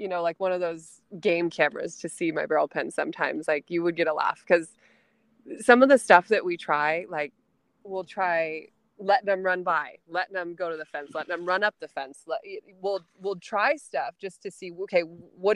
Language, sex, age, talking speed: English, female, 20-39, 220 wpm